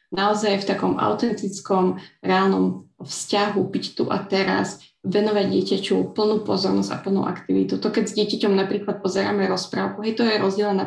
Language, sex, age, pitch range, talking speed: Slovak, female, 20-39, 190-205 Hz, 155 wpm